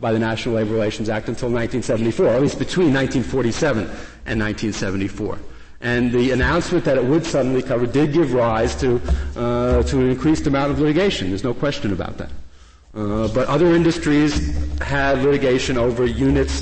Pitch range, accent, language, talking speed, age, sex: 115-170 Hz, American, English, 170 wpm, 50-69, male